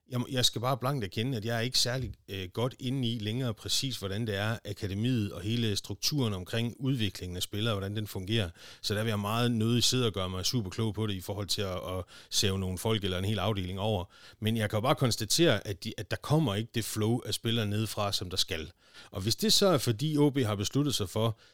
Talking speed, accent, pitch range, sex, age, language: 245 wpm, native, 100-130 Hz, male, 30-49, Danish